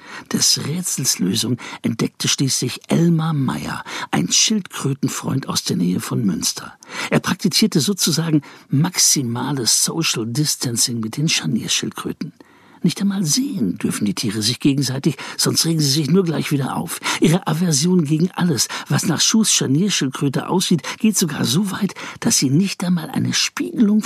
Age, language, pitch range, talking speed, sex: 60-79, German, 140-195 Hz, 145 wpm, male